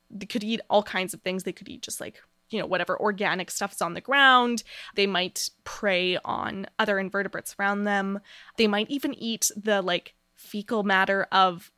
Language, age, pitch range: English, 20-39, 195-240 Hz